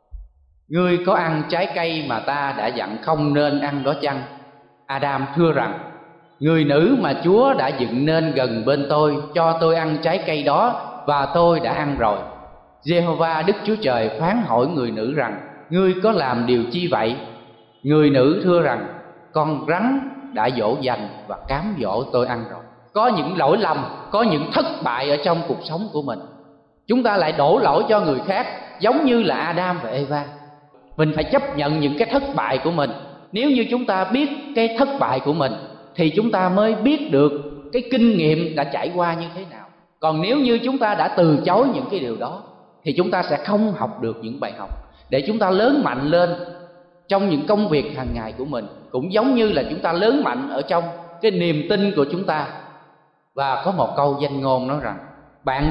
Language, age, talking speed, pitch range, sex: Vietnamese, 20-39, 205 wpm, 135-175 Hz, male